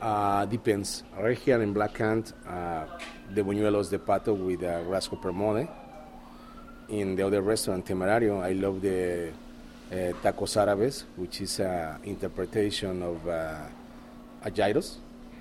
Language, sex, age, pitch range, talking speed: English, male, 30-49, 90-105 Hz, 140 wpm